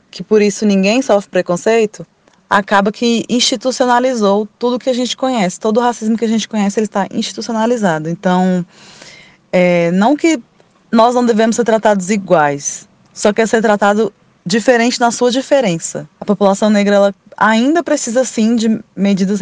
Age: 20-39